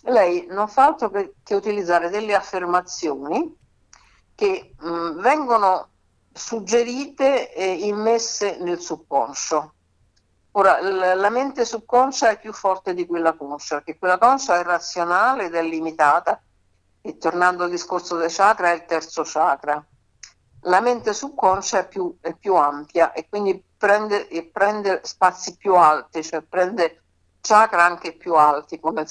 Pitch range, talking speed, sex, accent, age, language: 160-215 Hz, 135 wpm, female, native, 60-79, Italian